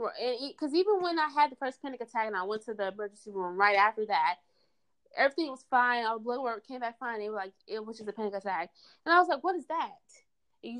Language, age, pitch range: English, 20-39, 230-295 Hz